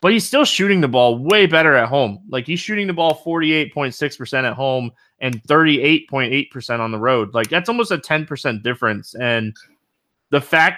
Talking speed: 180 wpm